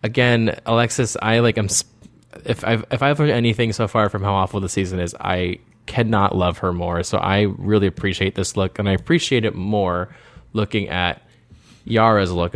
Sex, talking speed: male, 190 wpm